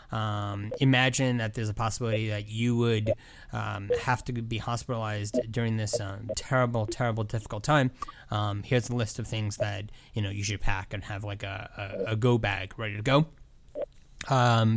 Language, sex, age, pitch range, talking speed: English, male, 20-39, 110-135 Hz, 185 wpm